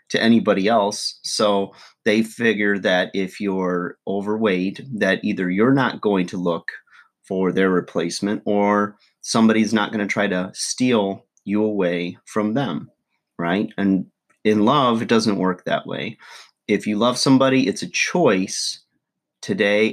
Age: 30-49